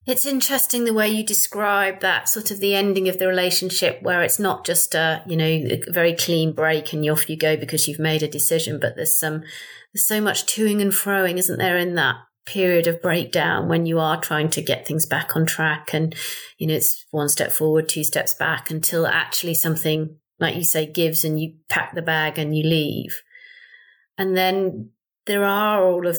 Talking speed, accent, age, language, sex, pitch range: 210 wpm, British, 30-49, English, female, 160-195 Hz